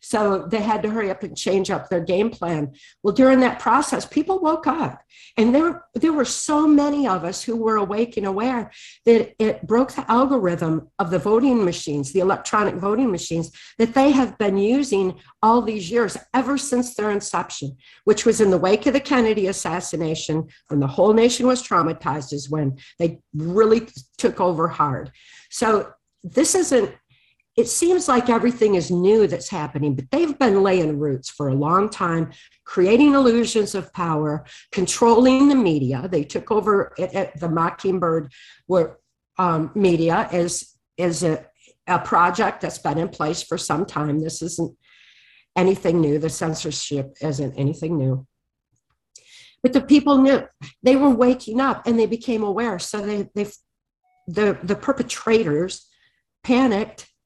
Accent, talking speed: American, 165 wpm